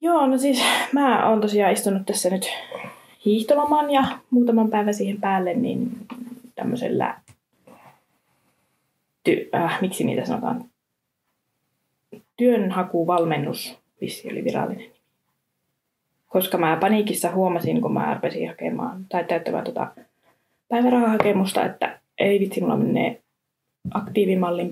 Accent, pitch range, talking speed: native, 180-245 Hz, 105 wpm